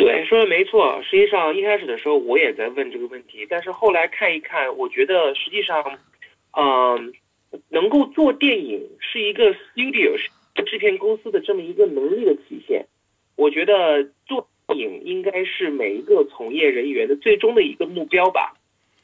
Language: Chinese